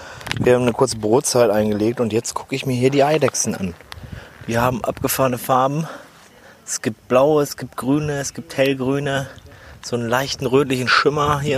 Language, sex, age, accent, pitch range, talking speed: German, male, 30-49, German, 115-140 Hz, 175 wpm